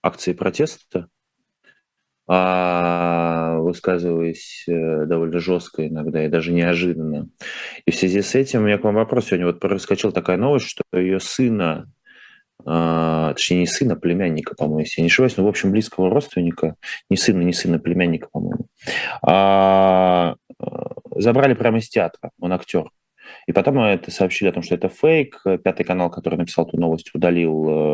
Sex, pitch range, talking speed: male, 85-105 Hz, 150 wpm